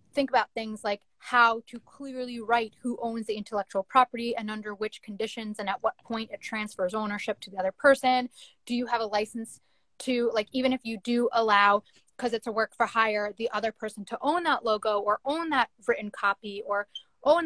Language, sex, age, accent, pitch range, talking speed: English, female, 20-39, American, 215-255 Hz, 205 wpm